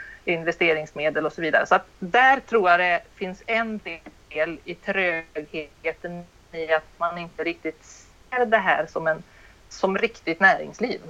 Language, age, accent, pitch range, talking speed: Swedish, 30-49, native, 160-205 Hz, 150 wpm